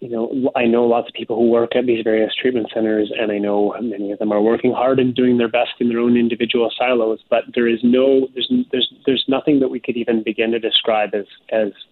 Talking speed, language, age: 245 wpm, English, 30-49